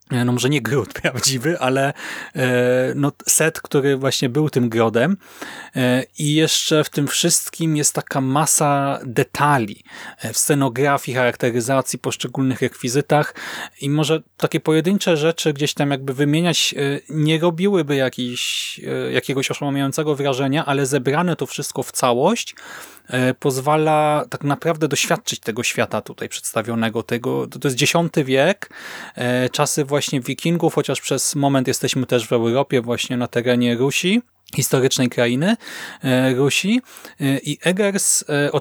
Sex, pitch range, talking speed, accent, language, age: male, 125-150 Hz, 125 wpm, native, Polish, 30-49